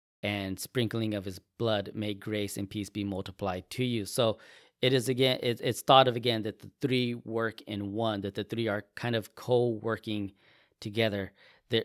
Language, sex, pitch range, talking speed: English, male, 100-115 Hz, 180 wpm